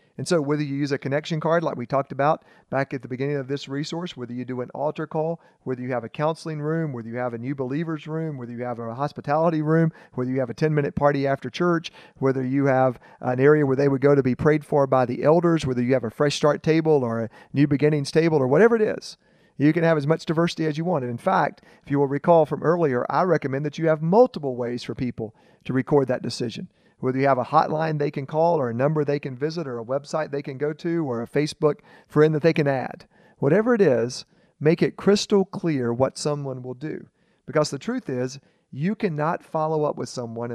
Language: Spanish